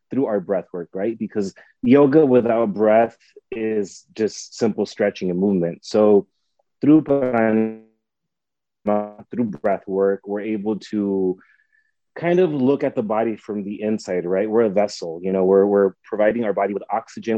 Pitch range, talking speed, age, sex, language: 100-120 Hz, 155 wpm, 30-49, male, English